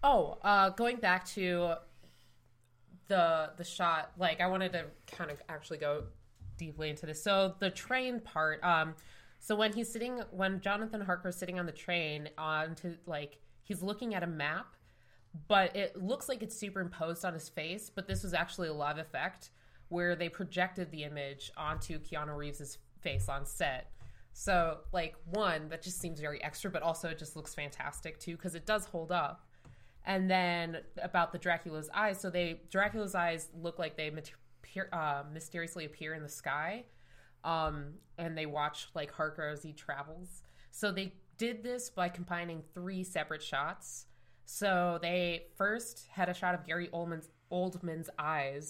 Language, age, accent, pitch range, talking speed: English, 20-39, American, 155-185 Hz, 170 wpm